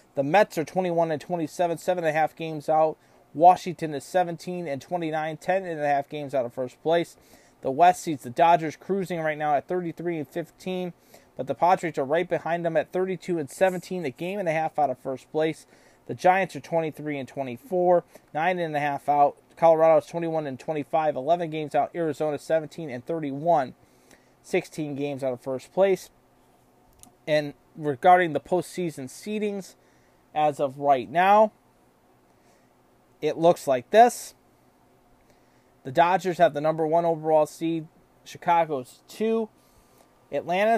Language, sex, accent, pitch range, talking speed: English, male, American, 140-180 Hz, 150 wpm